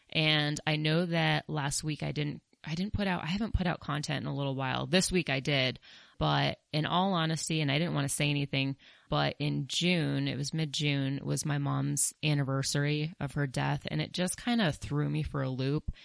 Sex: female